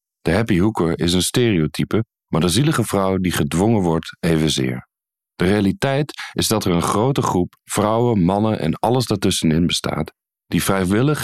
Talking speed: 160 wpm